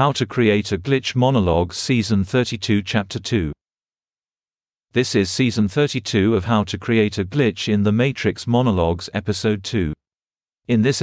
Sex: male